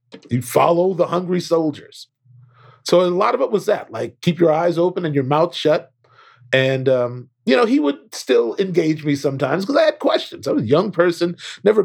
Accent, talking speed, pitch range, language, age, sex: American, 210 wpm, 140-200 Hz, English, 40-59, male